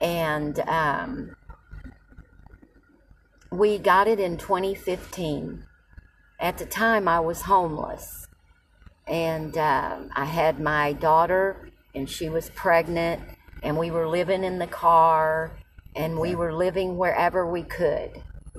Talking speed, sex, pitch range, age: 120 wpm, female, 155-195 Hz, 50-69